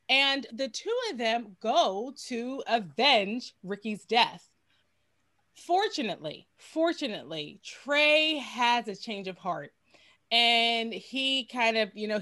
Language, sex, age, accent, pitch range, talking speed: English, female, 30-49, American, 195-260 Hz, 120 wpm